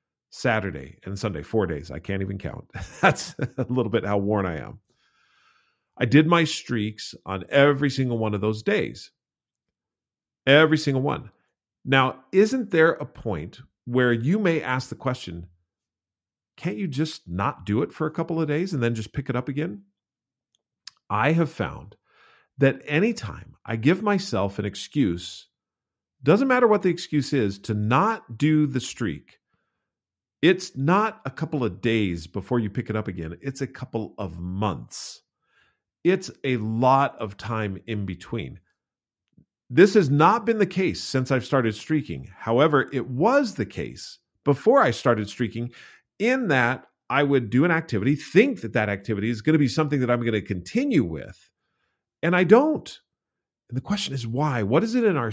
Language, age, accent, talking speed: English, 40-59, American, 170 wpm